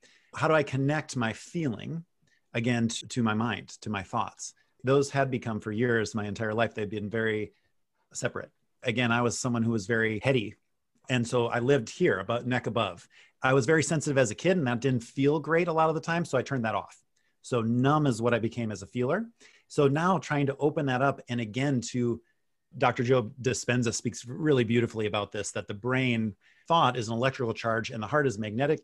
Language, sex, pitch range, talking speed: English, male, 115-150 Hz, 215 wpm